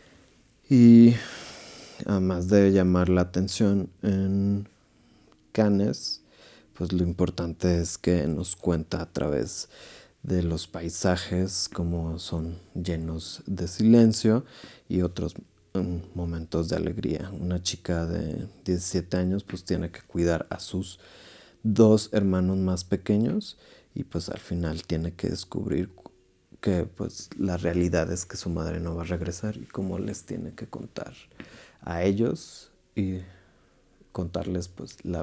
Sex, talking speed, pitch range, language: male, 130 wpm, 85-100 Hz, Spanish